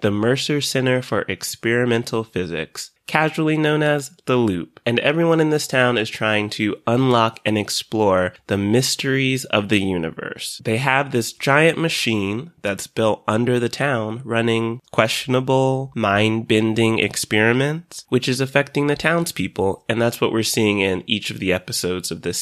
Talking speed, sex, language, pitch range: 155 wpm, male, English, 110-135 Hz